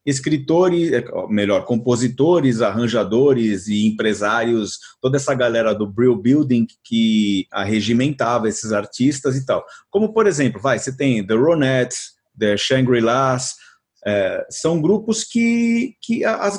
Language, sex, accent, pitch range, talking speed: Portuguese, male, Brazilian, 120-175 Hz, 125 wpm